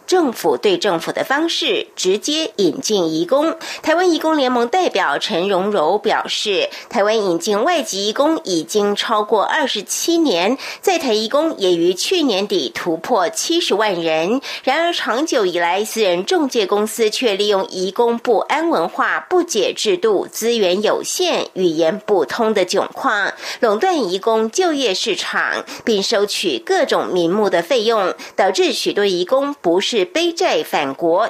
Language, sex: German, female